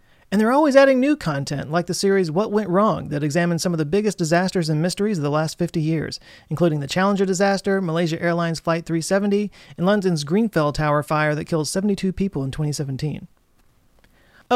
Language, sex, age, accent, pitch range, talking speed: English, male, 30-49, American, 160-210 Hz, 185 wpm